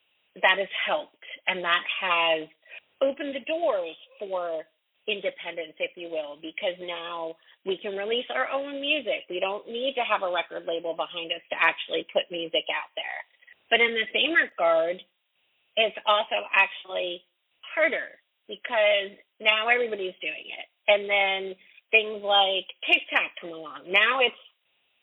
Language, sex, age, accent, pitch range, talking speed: English, female, 40-59, American, 170-245 Hz, 150 wpm